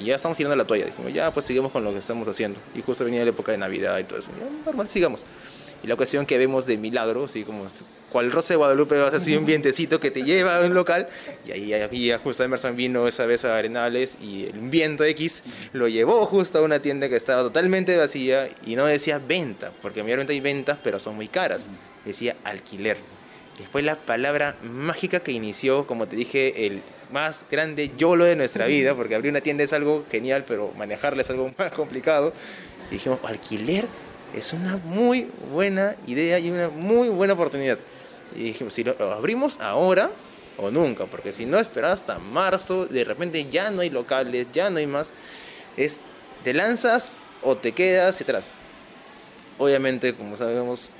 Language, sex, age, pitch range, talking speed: Spanish, male, 20-39, 120-170 Hz, 200 wpm